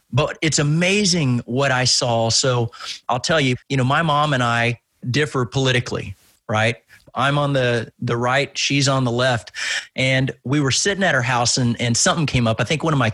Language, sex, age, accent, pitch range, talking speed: English, male, 30-49, American, 125-155 Hz, 205 wpm